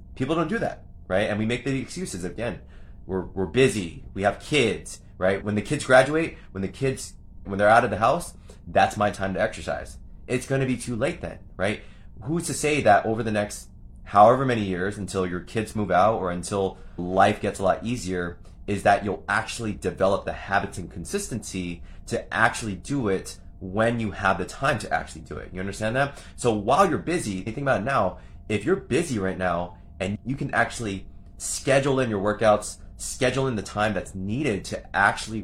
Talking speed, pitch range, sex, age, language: 205 wpm, 95-120 Hz, male, 20-39, English